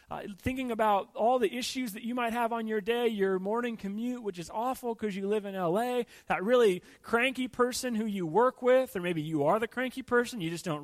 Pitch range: 145-240 Hz